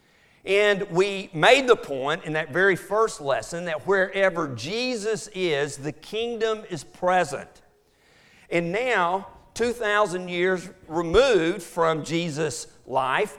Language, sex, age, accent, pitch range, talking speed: English, male, 50-69, American, 155-205 Hz, 115 wpm